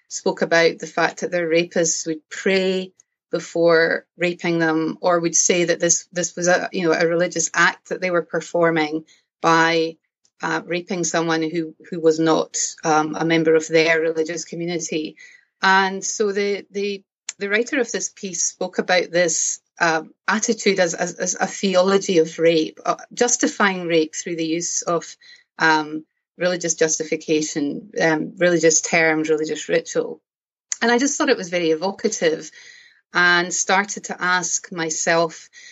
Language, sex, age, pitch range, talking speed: English, female, 30-49, 165-200 Hz, 155 wpm